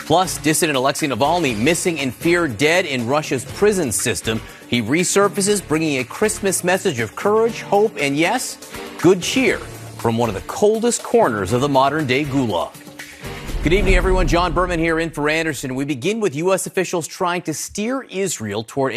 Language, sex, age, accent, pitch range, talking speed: English, male, 30-49, American, 120-180 Hz, 170 wpm